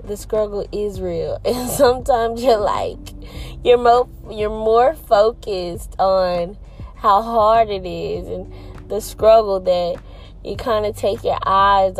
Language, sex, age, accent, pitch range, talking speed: English, female, 20-39, American, 165-210 Hz, 140 wpm